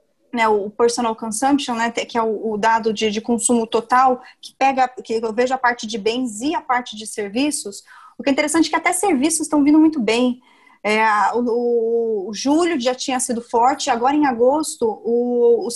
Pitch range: 230-295 Hz